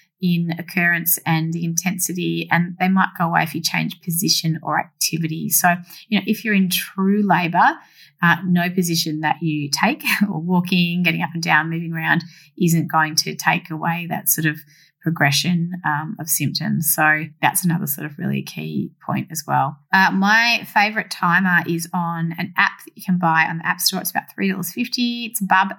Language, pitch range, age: English, 165-190 Hz, 20-39